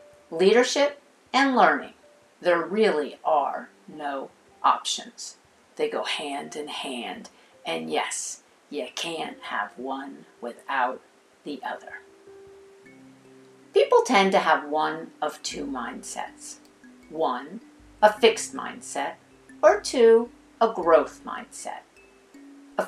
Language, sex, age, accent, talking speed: English, female, 50-69, American, 105 wpm